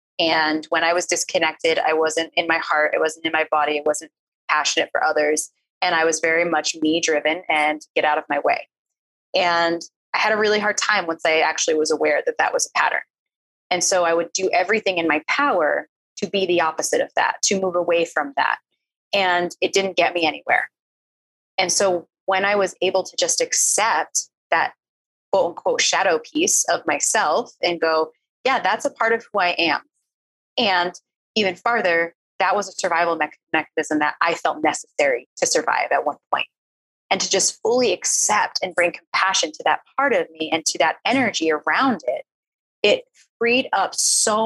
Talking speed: 195 wpm